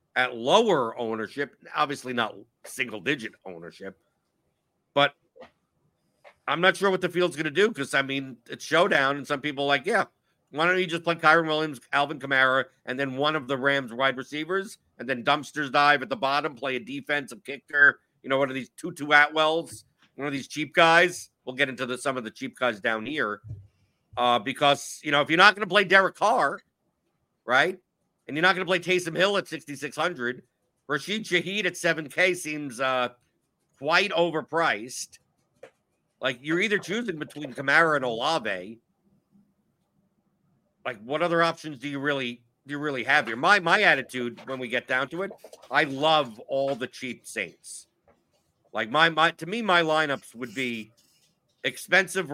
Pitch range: 130-170 Hz